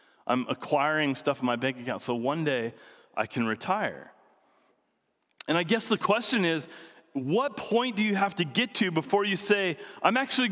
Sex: male